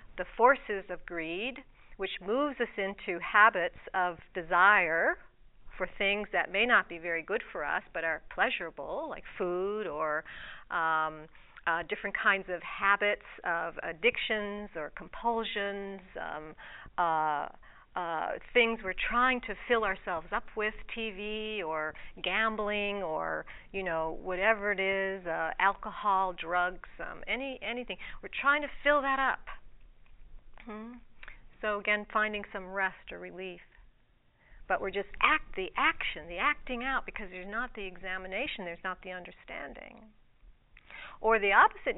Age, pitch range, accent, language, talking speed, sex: 50-69, 185-240 Hz, American, English, 140 wpm, female